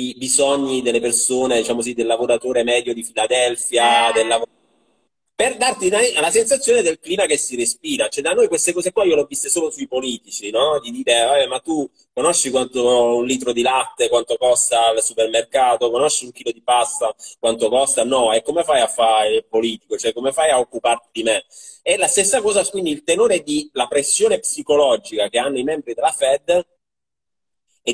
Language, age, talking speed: Italian, 30-49, 190 wpm